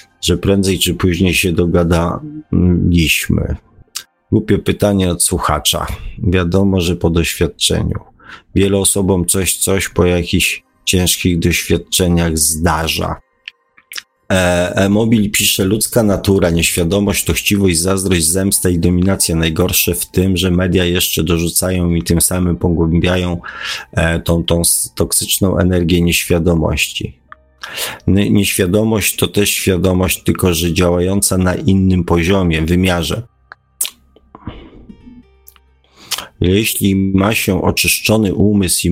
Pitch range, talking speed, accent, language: 85-95 Hz, 105 wpm, native, Polish